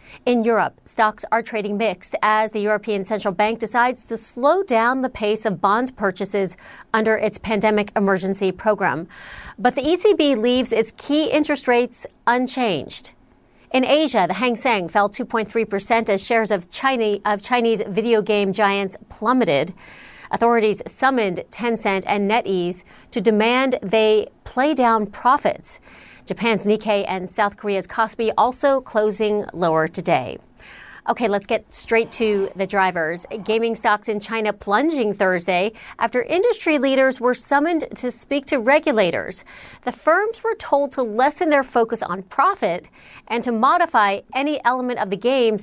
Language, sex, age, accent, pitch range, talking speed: English, female, 40-59, American, 205-250 Hz, 145 wpm